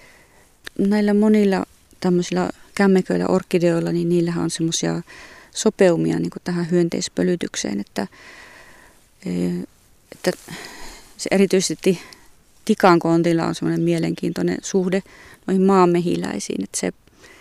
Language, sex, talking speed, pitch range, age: Finnish, female, 85 wpm, 165-190 Hz, 30-49